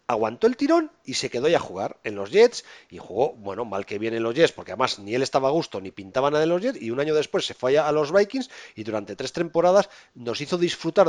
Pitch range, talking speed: 150-235 Hz, 275 wpm